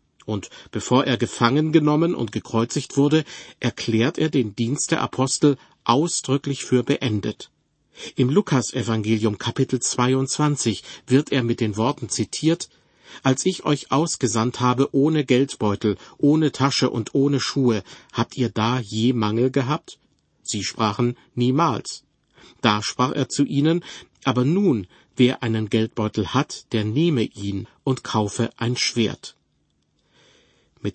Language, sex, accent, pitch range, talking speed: German, male, German, 115-140 Hz, 130 wpm